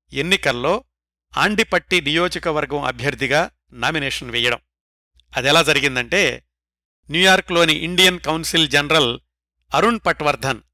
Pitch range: 135-180 Hz